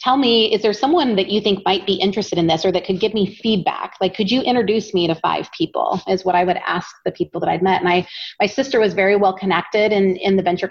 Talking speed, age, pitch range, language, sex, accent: 270 wpm, 30-49, 190-235 Hz, English, female, American